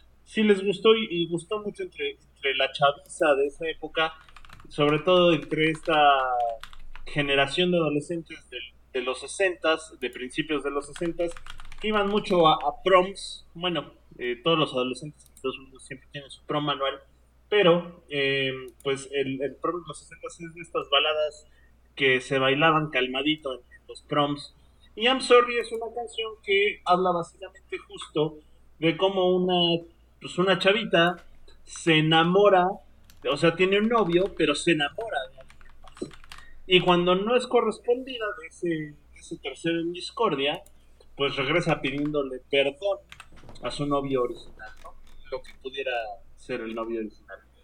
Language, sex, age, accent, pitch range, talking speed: Spanish, male, 30-49, Mexican, 135-185 Hz, 155 wpm